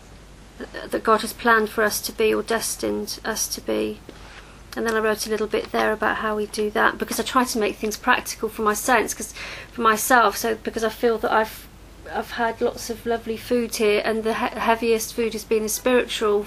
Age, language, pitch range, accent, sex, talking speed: 40-59, English, 215-235 Hz, British, female, 220 wpm